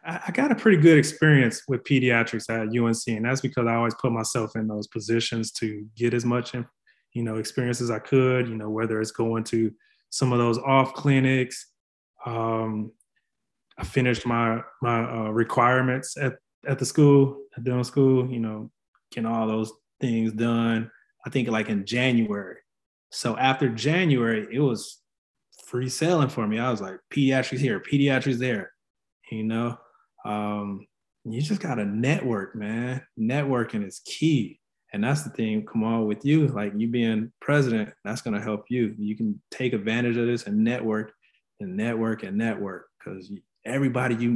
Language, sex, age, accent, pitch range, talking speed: English, male, 20-39, American, 110-130 Hz, 170 wpm